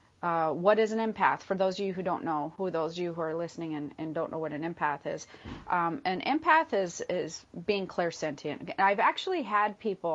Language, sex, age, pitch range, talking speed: English, female, 30-49, 155-185 Hz, 225 wpm